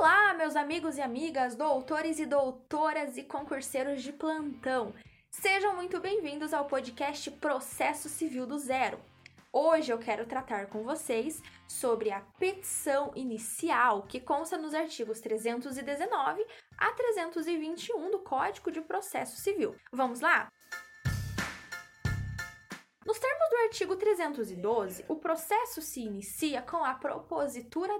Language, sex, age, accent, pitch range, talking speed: Portuguese, female, 10-29, Brazilian, 255-360 Hz, 120 wpm